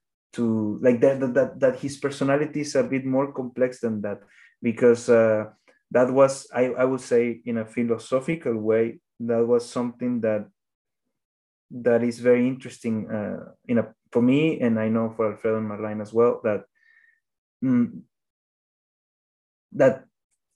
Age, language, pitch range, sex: 20-39, English, 115-135 Hz, male